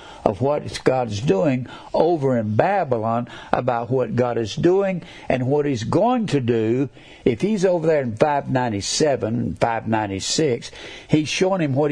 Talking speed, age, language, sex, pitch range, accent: 145 wpm, 60-79, English, male, 115-145 Hz, American